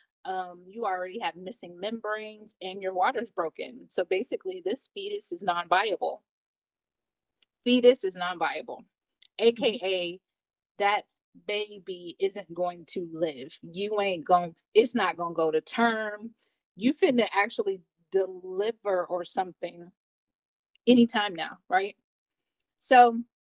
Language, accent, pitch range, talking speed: English, American, 180-245 Hz, 120 wpm